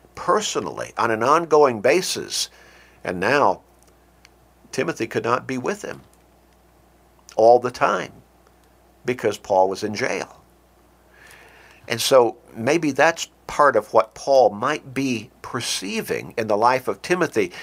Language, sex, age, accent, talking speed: English, male, 60-79, American, 125 wpm